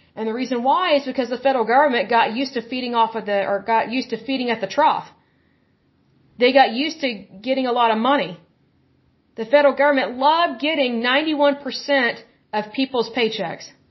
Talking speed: 185 wpm